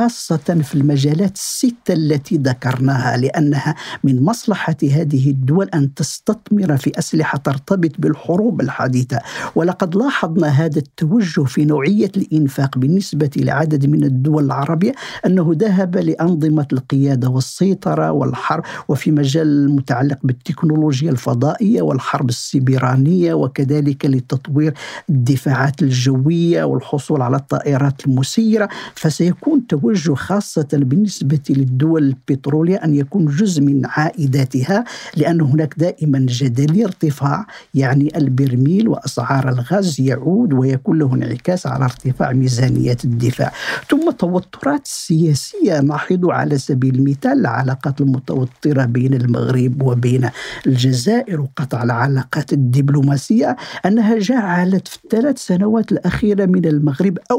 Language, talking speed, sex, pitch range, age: Arabic, 110 wpm, male, 135-180 Hz, 50-69